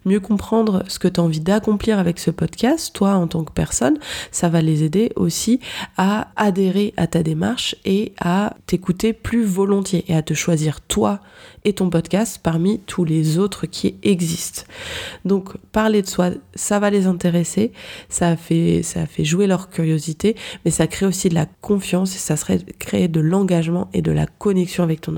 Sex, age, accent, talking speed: female, 20-39, French, 185 wpm